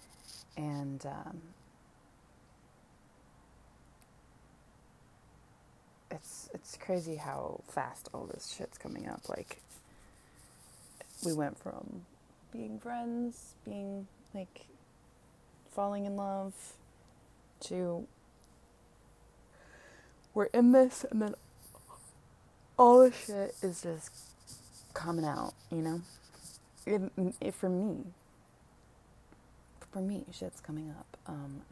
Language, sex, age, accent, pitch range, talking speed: English, female, 20-39, American, 155-190 Hz, 90 wpm